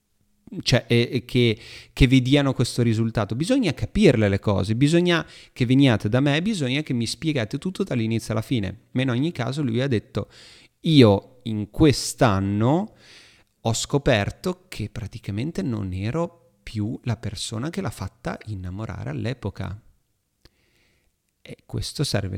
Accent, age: native, 30-49